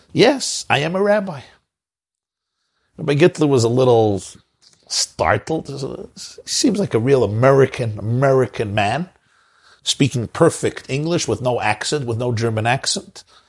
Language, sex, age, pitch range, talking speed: English, male, 50-69, 120-160 Hz, 130 wpm